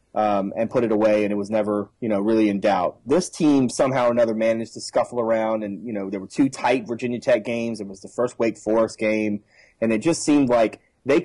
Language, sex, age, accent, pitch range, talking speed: English, male, 30-49, American, 105-120 Hz, 245 wpm